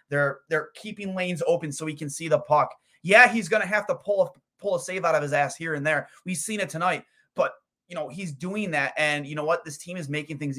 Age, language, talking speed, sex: 20-39, English, 270 wpm, male